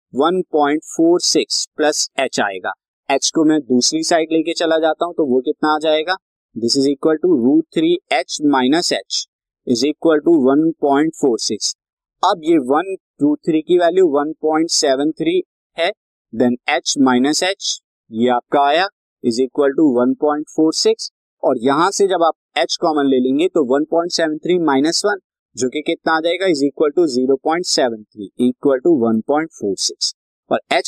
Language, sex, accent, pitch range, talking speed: Hindi, male, native, 135-175 Hz, 120 wpm